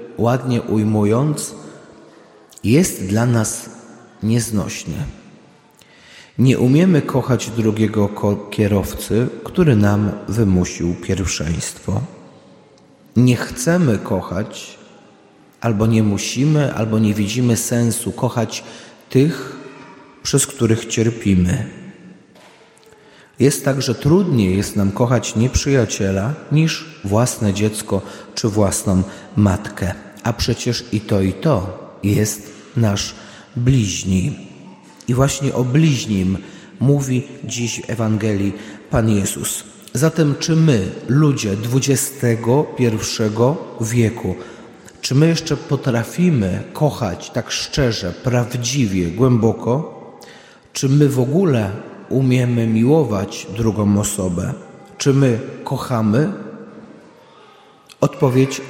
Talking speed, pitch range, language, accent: 90 wpm, 105-130 Hz, Polish, native